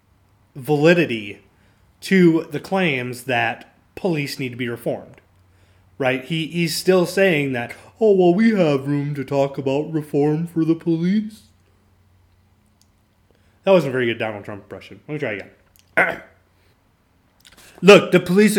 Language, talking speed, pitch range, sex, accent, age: English, 140 wpm, 135-180 Hz, male, American, 20-39